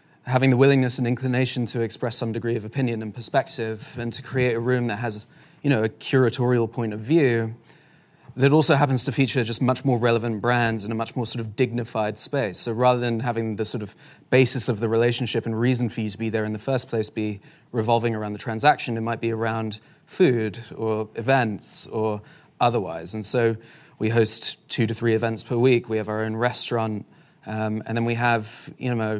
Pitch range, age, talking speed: 110-125 Hz, 20-39, 210 wpm